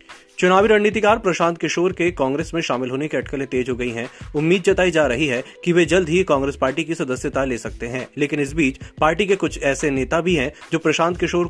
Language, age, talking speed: Hindi, 30-49, 230 wpm